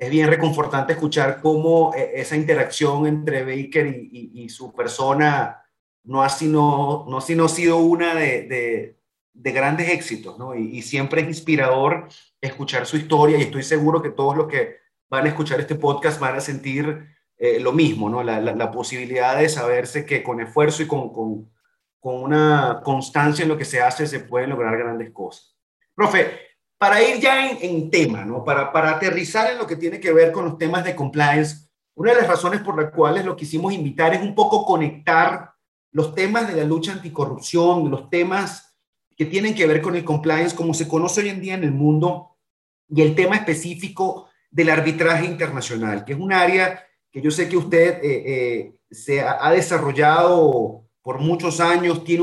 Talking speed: 190 wpm